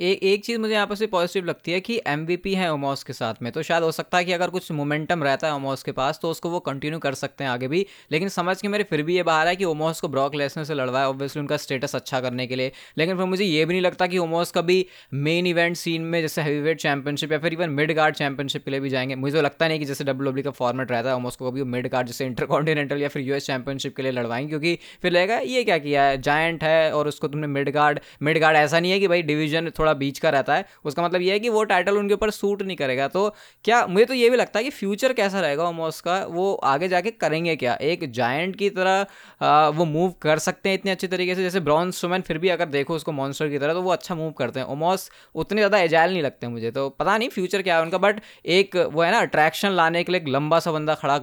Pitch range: 140-180 Hz